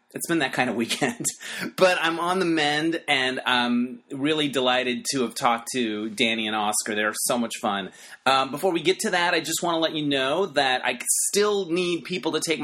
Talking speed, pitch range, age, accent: 220 wpm, 120-145 Hz, 30-49, American